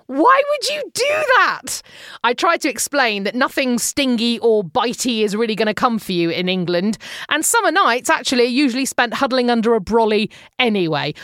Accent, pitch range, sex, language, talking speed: British, 210-285 Hz, female, English, 185 wpm